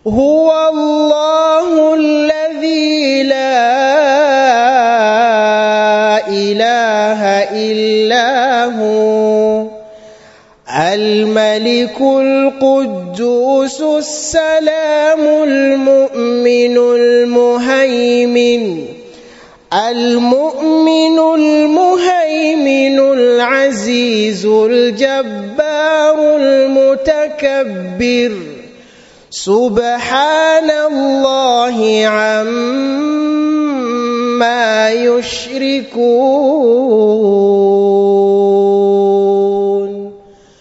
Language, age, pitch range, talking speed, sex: English, 30-49, 235-305 Hz, 30 wpm, male